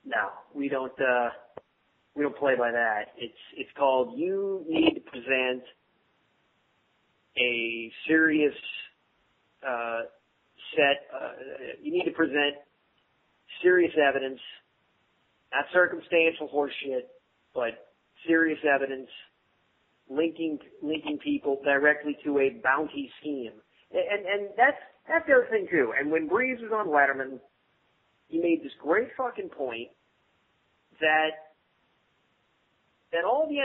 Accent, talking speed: American, 120 wpm